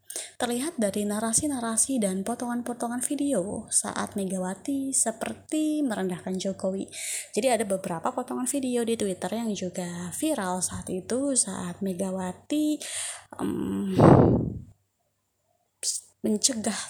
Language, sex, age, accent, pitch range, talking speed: Indonesian, female, 20-39, native, 185-250 Hz, 95 wpm